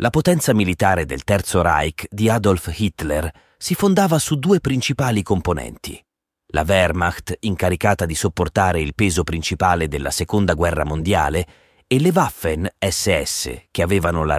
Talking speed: 140 wpm